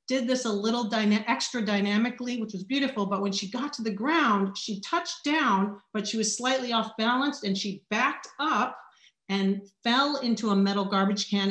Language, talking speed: English, 195 wpm